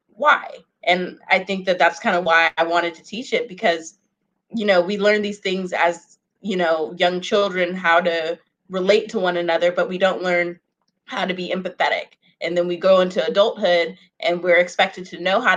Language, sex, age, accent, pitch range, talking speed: English, female, 20-39, American, 170-195 Hz, 200 wpm